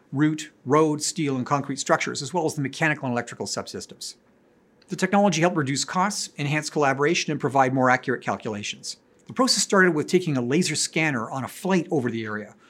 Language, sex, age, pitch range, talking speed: English, male, 50-69, 135-180 Hz, 190 wpm